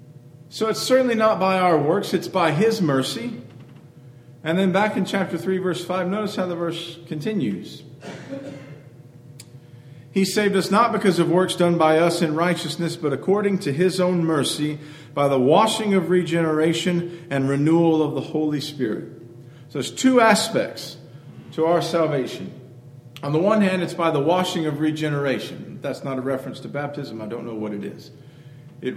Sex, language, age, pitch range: male, English, 40-59, 135-175 Hz